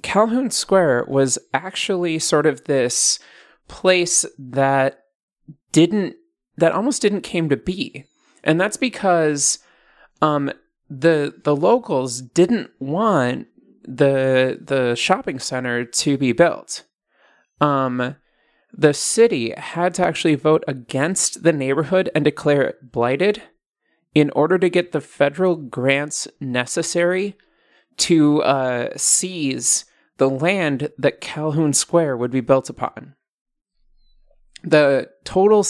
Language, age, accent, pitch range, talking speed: English, 30-49, American, 135-175 Hz, 115 wpm